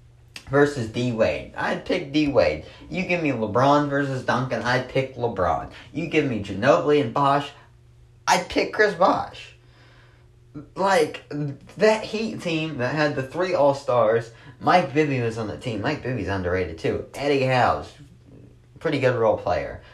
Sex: male